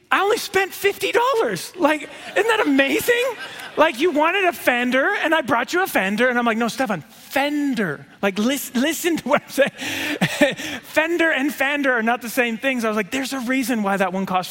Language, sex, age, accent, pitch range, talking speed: English, male, 20-39, American, 200-280 Hz, 205 wpm